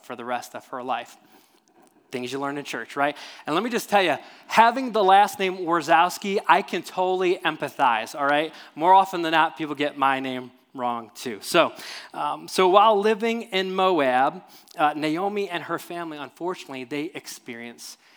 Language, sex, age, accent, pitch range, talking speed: English, male, 20-39, American, 130-170 Hz, 180 wpm